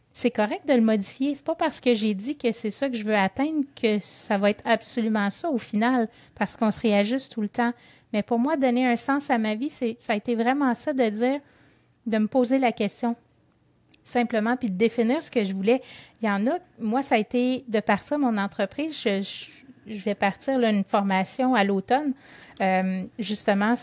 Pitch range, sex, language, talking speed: 205-255 Hz, female, French, 220 wpm